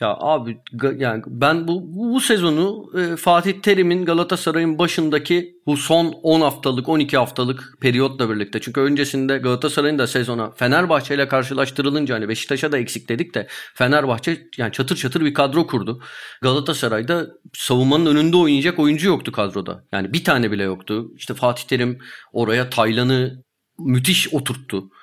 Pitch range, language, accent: 130-155 Hz, Turkish, native